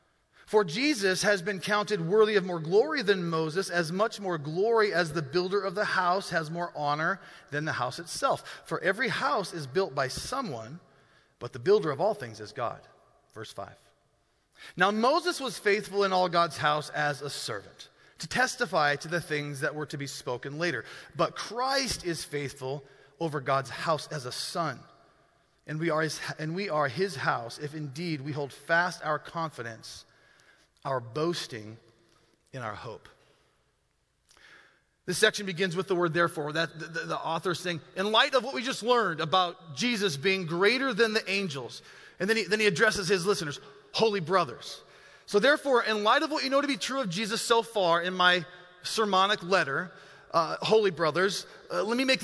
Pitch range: 160-215 Hz